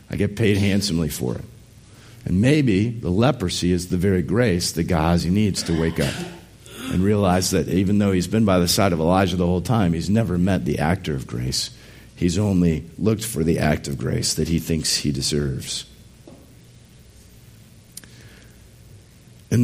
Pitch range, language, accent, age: 85-105 Hz, English, American, 50-69